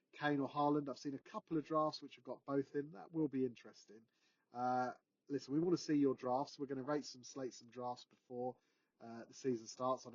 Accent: British